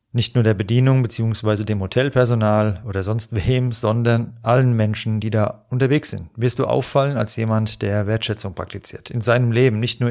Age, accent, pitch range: 40-59, German, 105-125 Hz